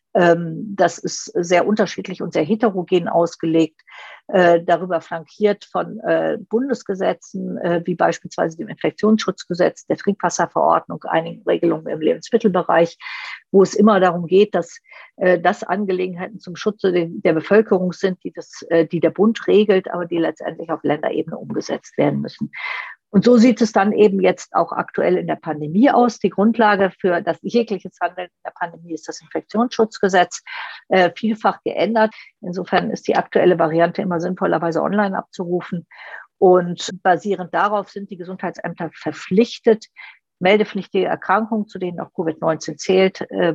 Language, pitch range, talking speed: German, 175-210 Hz, 135 wpm